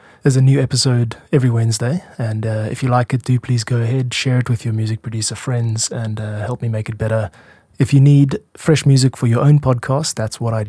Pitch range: 110-130 Hz